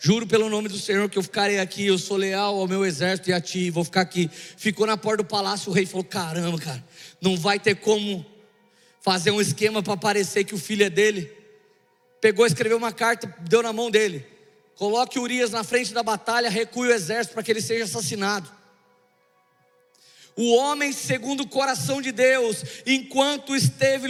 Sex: male